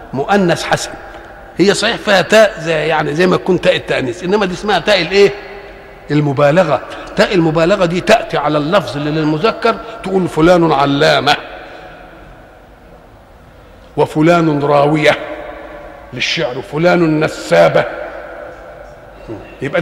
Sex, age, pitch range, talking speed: male, 50-69, 155-200 Hz, 105 wpm